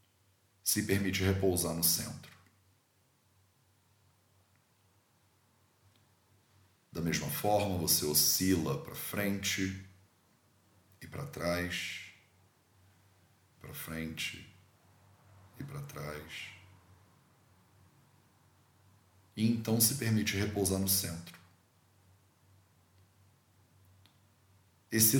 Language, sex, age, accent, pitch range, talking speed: English, male, 40-59, Brazilian, 95-105 Hz, 65 wpm